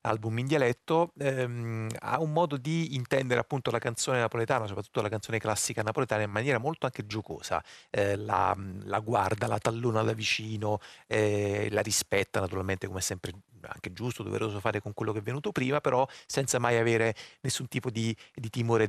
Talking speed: 180 wpm